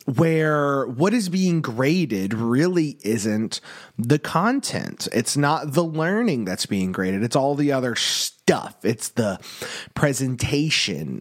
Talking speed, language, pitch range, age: 130 wpm, English, 125-170 Hz, 30-49